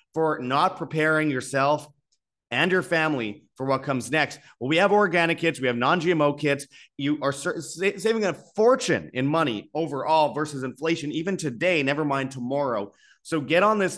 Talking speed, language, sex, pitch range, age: 170 wpm, English, male, 115-150 Hz, 30-49